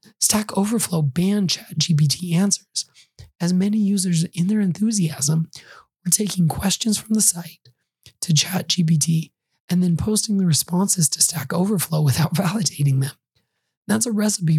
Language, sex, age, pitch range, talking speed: English, male, 20-39, 155-185 Hz, 135 wpm